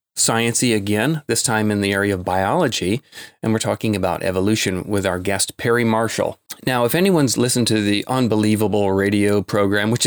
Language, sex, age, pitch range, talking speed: English, male, 30-49, 100-120 Hz, 175 wpm